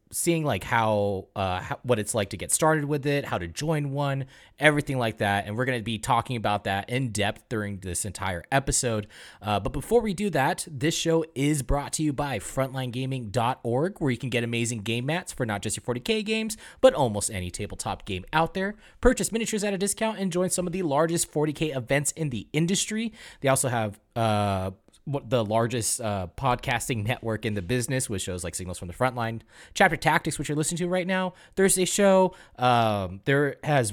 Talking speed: 205 wpm